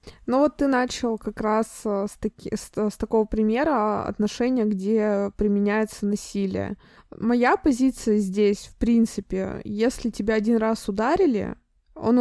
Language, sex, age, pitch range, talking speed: Russian, female, 20-39, 195-225 Hz, 135 wpm